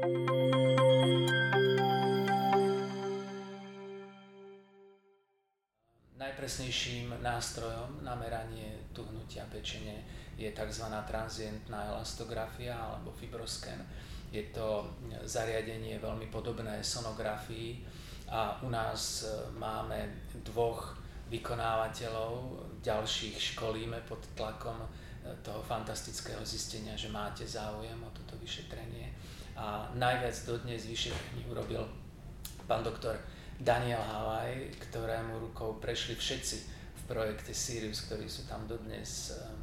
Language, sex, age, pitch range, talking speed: Slovak, male, 30-49, 110-120 Hz, 85 wpm